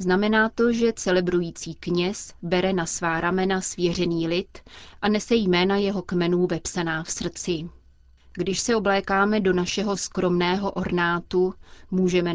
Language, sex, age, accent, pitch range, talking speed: Czech, female, 30-49, native, 175-195 Hz, 130 wpm